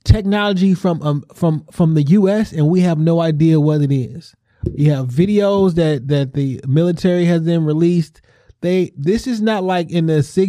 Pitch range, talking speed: 145-195 Hz, 185 wpm